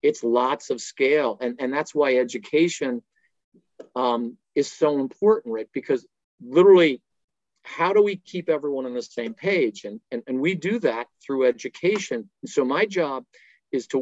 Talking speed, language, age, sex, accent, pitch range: 165 wpm, English, 50-69, male, American, 135-205 Hz